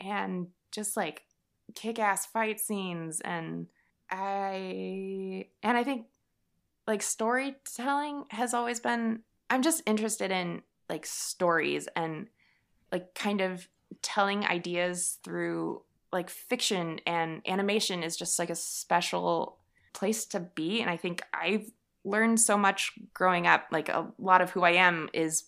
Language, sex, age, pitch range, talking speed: English, female, 20-39, 170-215 Hz, 135 wpm